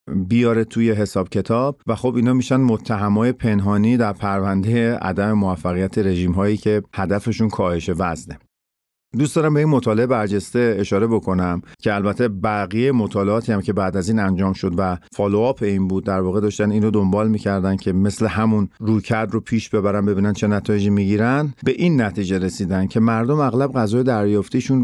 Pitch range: 100-120 Hz